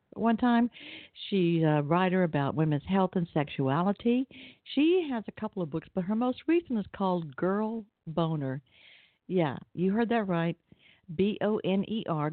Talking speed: 145 wpm